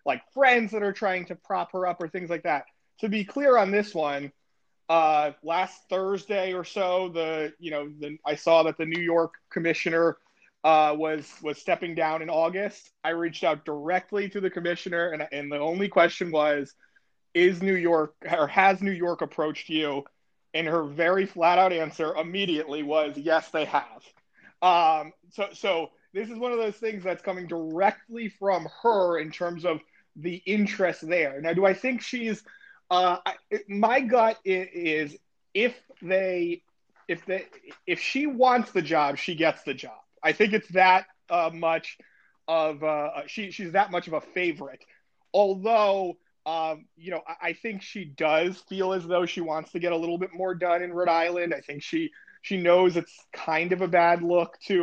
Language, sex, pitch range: English, male, 160-195 Hz